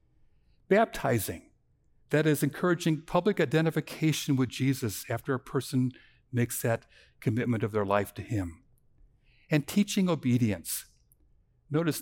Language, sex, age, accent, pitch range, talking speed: English, male, 60-79, American, 115-155 Hz, 115 wpm